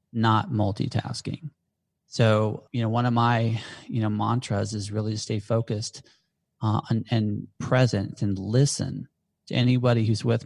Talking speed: 150 wpm